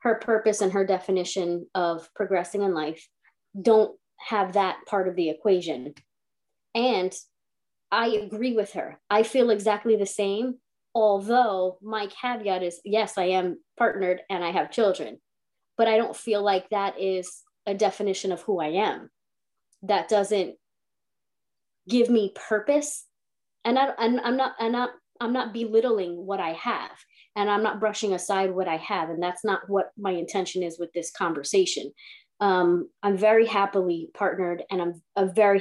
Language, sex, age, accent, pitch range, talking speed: English, female, 30-49, American, 185-220 Hz, 160 wpm